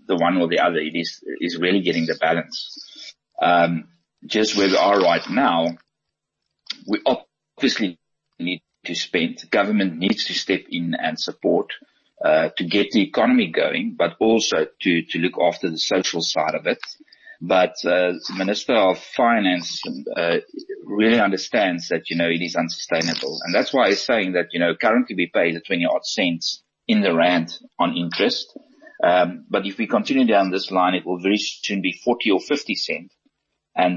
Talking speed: 180 wpm